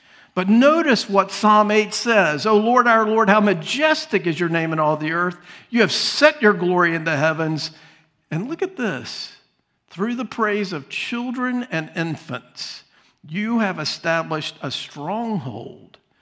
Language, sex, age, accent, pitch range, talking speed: English, male, 50-69, American, 160-230 Hz, 160 wpm